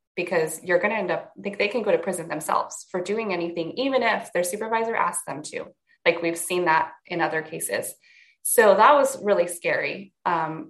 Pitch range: 160-215 Hz